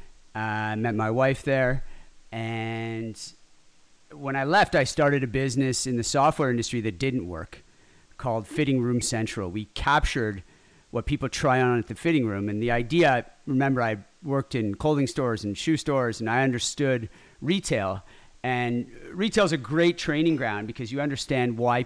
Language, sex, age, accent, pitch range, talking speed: English, male, 40-59, American, 110-135 Hz, 165 wpm